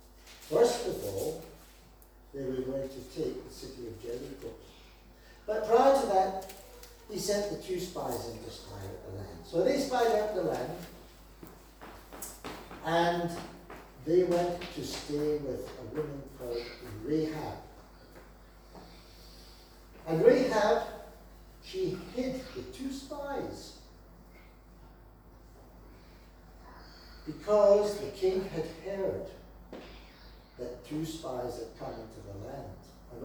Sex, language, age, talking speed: male, English, 60-79, 115 wpm